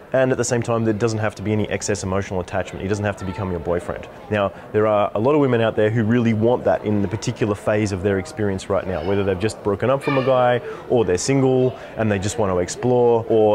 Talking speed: 270 wpm